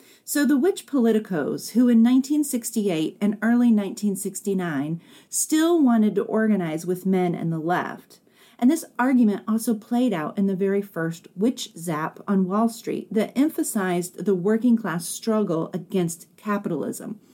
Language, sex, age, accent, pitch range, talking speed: English, female, 40-59, American, 175-225 Hz, 145 wpm